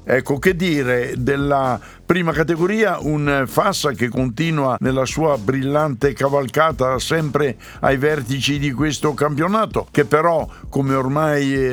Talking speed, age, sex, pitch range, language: 125 wpm, 60-79, male, 120-150 Hz, Italian